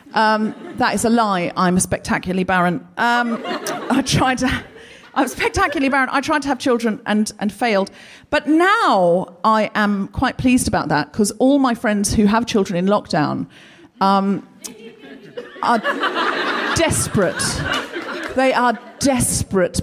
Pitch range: 195-285 Hz